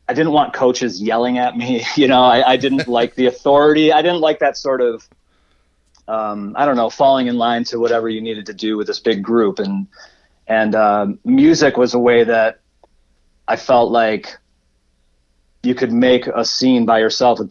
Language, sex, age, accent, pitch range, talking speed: English, male, 30-49, American, 110-130 Hz, 195 wpm